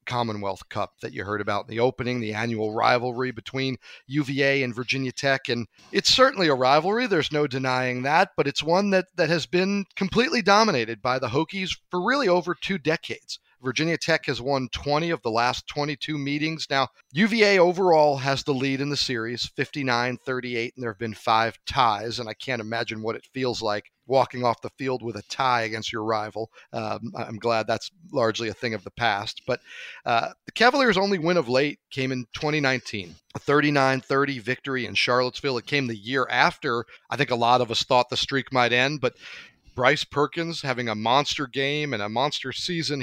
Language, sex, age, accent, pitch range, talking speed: English, male, 40-59, American, 115-150 Hz, 195 wpm